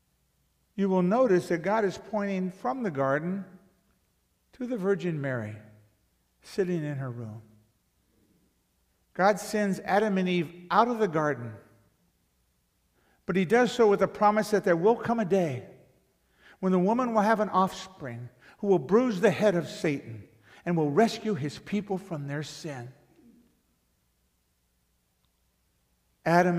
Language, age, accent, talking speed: English, 60-79, American, 140 wpm